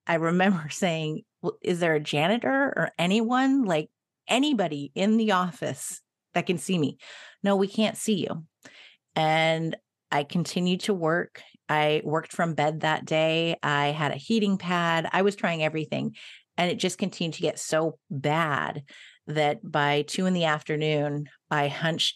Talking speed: 160 wpm